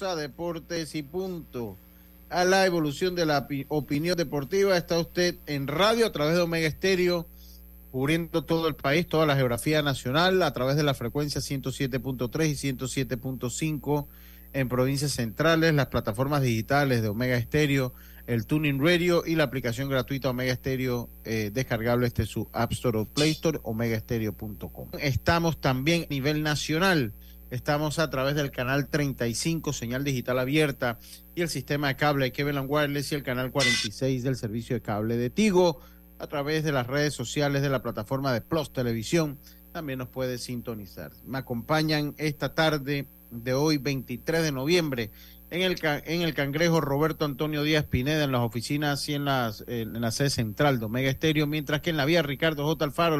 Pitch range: 120-155 Hz